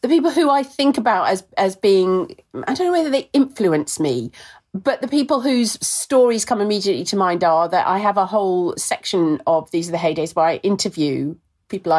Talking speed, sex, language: 205 wpm, female, English